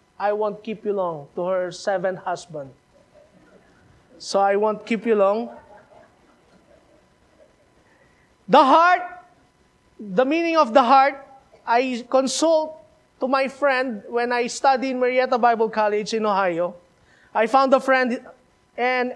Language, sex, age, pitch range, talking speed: English, male, 20-39, 210-285 Hz, 130 wpm